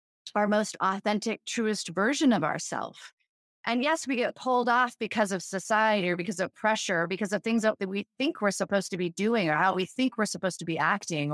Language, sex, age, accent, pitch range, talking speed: English, female, 30-49, American, 200-270 Hz, 215 wpm